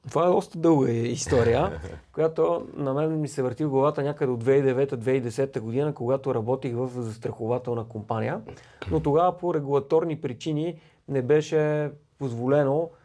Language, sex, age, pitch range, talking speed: Bulgarian, male, 30-49, 125-150 Hz, 140 wpm